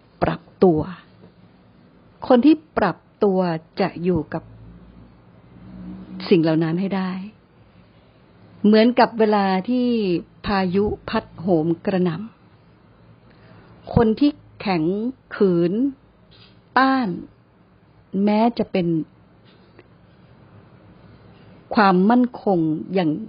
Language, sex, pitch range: Thai, female, 170-220 Hz